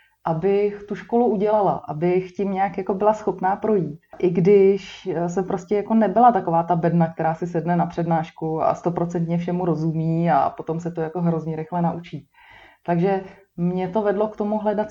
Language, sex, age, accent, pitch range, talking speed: Czech, female, 30-49, native, 175-215 Hz, 175 wpm